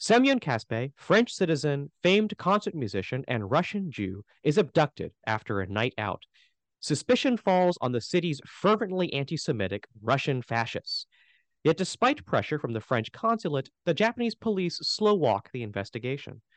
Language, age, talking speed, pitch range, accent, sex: English, 30-49, 140 wpm, 115-180 Hz, American, male